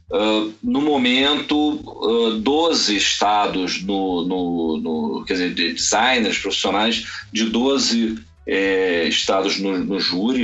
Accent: Brazilian